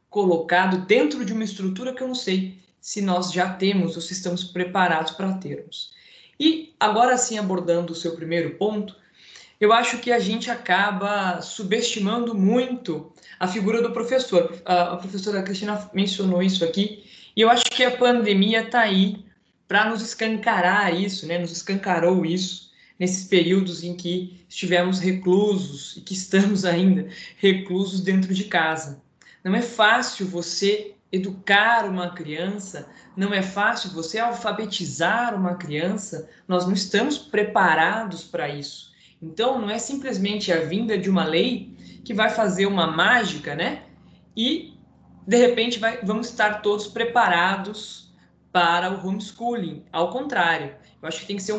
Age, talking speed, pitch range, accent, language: 20-39, 150 wpm, 180-225 Hz, Brazilian, Portuguese